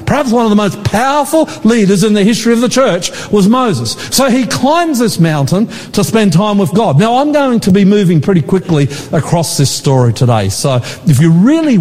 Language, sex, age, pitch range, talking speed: English, male, 50-69, 165-230 Hz, 210 wpm